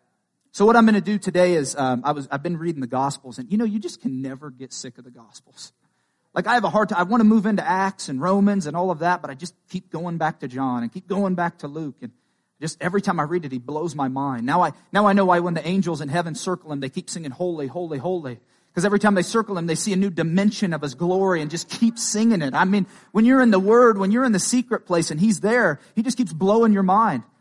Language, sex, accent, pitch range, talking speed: English, male, American, 140-195 Hz, 290 wpm